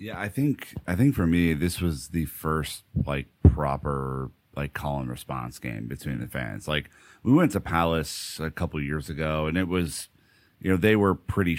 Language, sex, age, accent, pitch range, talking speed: English, male, 30-49, American, 75-95 Hz, 195 wpm